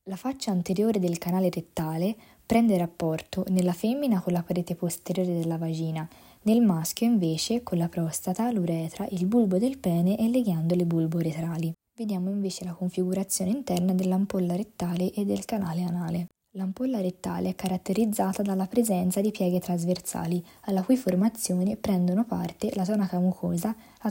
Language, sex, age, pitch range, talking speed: Italian, female, 20-39, 170-205 Hz, 150 wpm